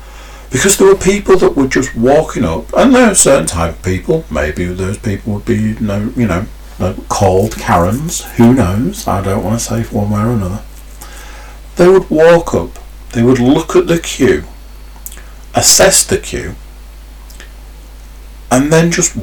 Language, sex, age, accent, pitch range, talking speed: English, male, 40-59, British, 85-135 Hz, 170 wpm